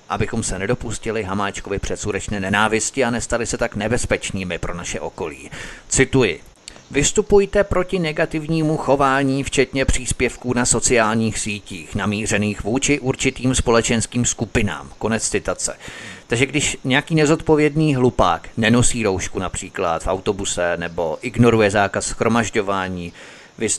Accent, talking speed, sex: native, 115 wpm, male